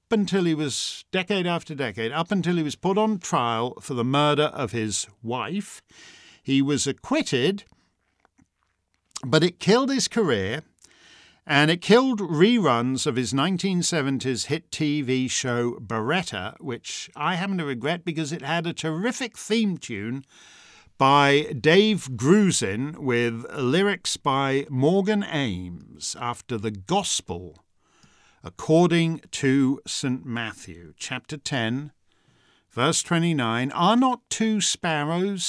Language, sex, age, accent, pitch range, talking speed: English, male, 50-69, British, 125-190 Hz, 125 wpm